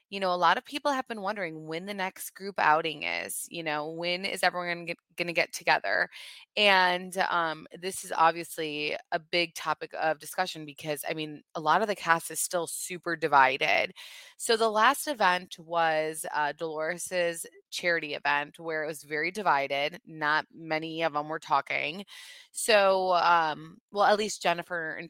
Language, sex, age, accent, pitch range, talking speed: English, female, 20-39, American, 160-205 Hz, 175 wpm